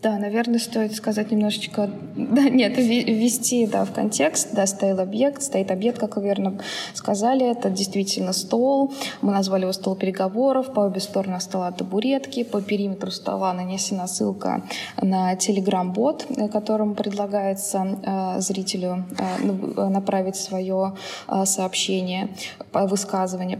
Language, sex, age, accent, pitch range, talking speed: Russian, female, 20-39, native, 195-225 Hz, 130 wpm